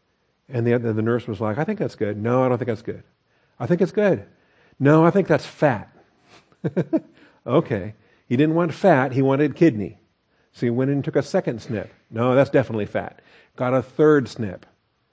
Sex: male